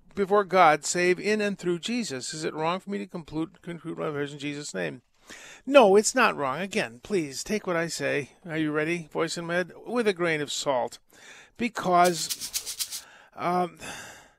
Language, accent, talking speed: English, American, 170 wpm